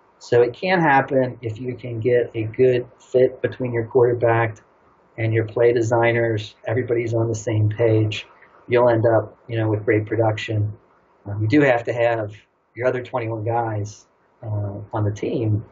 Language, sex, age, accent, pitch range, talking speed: English, male, 40-59, American, 110-120 Hz, 170 wpm